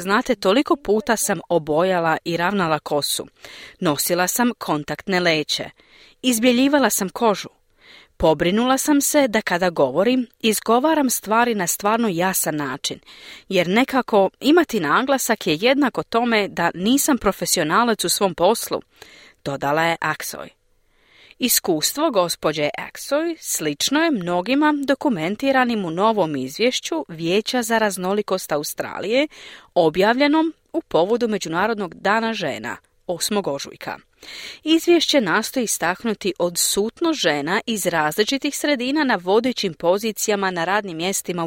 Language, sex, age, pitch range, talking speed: Croatian, female, 40-59, 175-250 Hz, 115 wpm